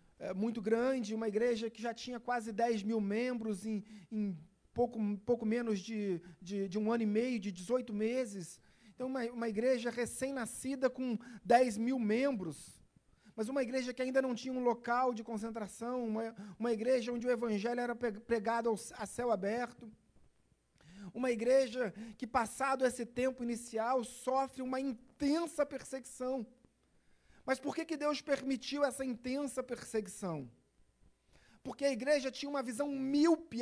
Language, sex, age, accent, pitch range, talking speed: Portuguese, male, 40-59, Brazilian, 225-275 Hz, 155 wpm